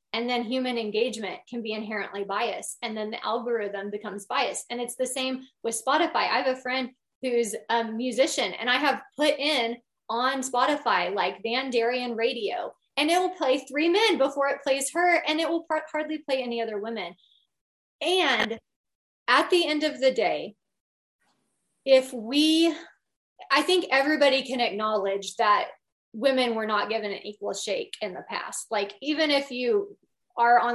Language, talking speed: English, 170 wpm